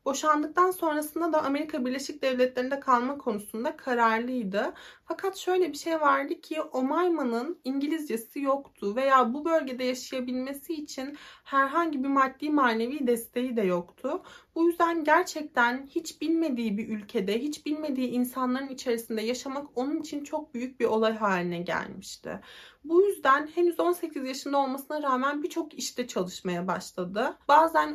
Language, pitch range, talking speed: Turkish, 235-310 Hz, 135 wpm